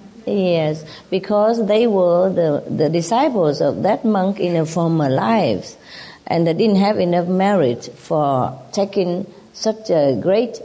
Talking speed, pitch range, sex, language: 140 wpm, 165-250 Hz, female, English